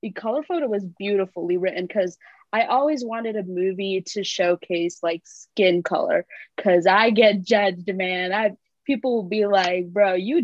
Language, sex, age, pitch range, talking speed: English, female, 20-39, 180-215 Hz, 160 wpm